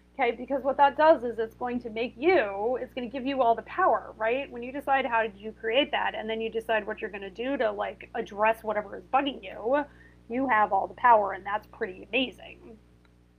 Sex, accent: female, American